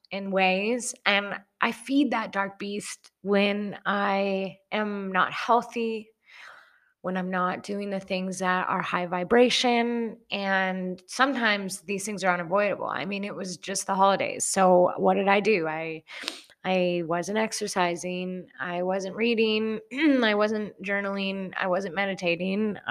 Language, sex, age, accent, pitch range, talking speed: English, female, 20-39, American, 180-215 Hz, 140 wpm